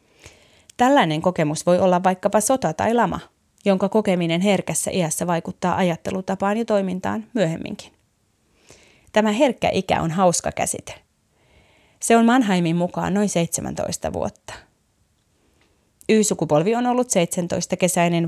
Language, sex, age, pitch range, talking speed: Finnish, female, 30-49, 165-200 Hz, 110 wpm